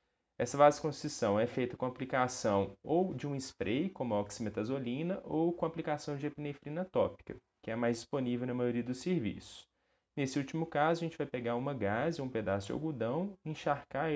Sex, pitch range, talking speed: male, 120-160 Hz, 175 wpm